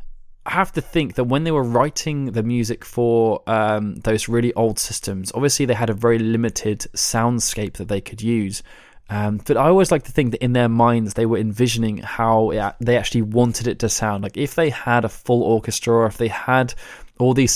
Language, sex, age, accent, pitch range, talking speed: English, male, 20-39, British, 110-125 Hz, 215 wpm